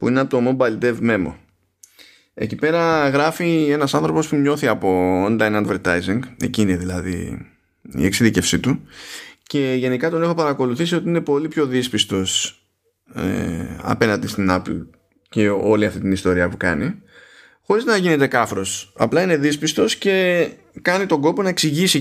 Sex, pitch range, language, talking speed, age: male, 100-150 Hz, Greek, 155 wpm, 20-39